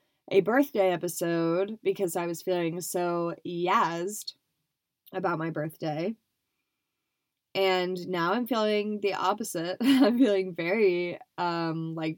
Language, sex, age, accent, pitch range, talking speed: English, female, 20-39, American, 165-195 Hz, 115 wpm